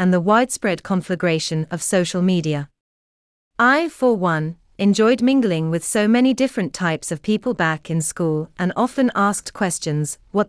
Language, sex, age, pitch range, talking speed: English, female, 40-59, 160-230 Hz, 155 wpm